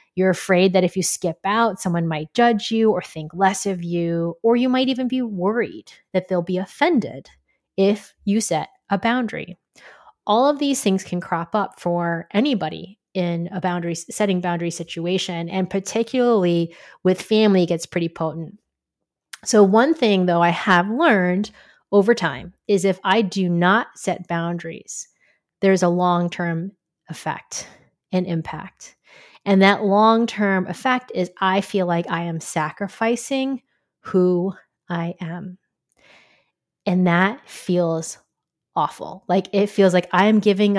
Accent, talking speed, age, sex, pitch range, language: American, 150 wpm, 30-49, female, 175-205 Hz, English